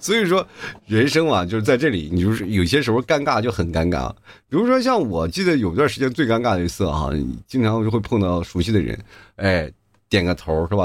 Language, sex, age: Chinese, male, 30-49